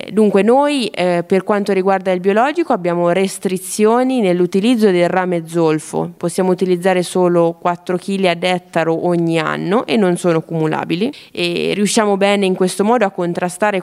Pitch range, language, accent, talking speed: 170-195 Hz, Italian, native, 150 wpm